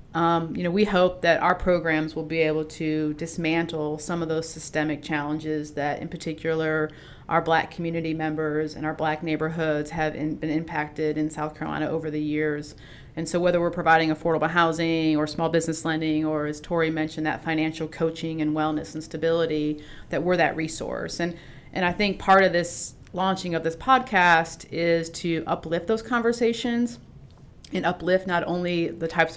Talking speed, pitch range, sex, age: 180 wpm, 155-170 Hz, female, 40-59